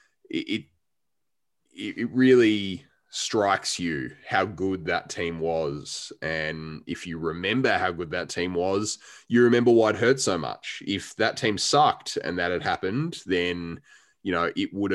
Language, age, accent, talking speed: English, 20-39, Australian, 160 wpm